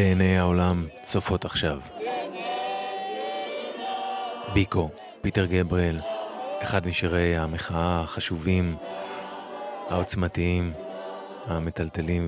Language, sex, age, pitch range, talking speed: English, male, 30-49, 85-100 Hz, 65 wpm